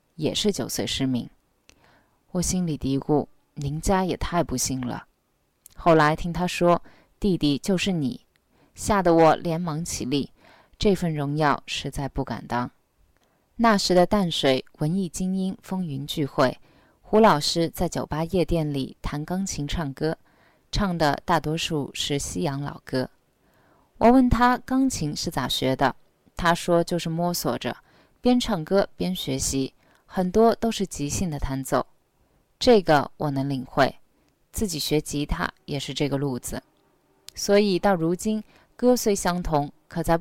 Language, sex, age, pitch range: Chinese, female, 20-39, 145-190 Hz